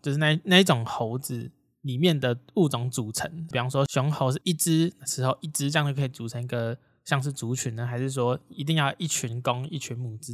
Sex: male